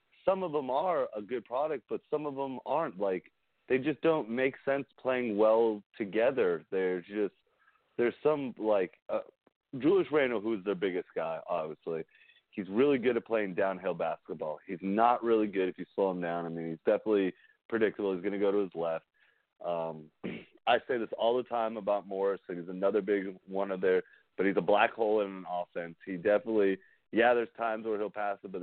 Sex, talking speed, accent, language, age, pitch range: male, 205 wpm, American, English, 30-49, 95-120 Hz